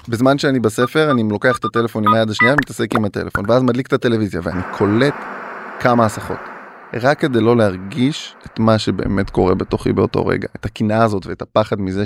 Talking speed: 190 wpm